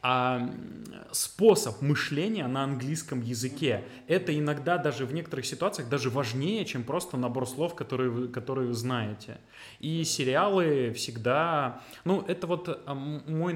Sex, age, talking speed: male, 20-39, 130 wpm